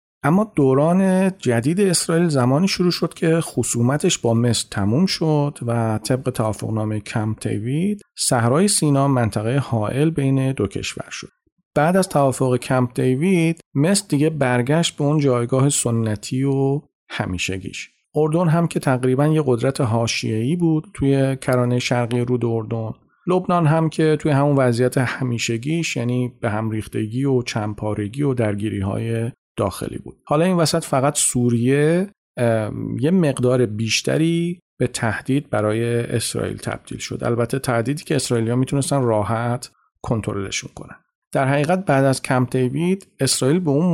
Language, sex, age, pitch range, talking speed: Persian, male, 40-59, 115-150 Hz, 140 wpm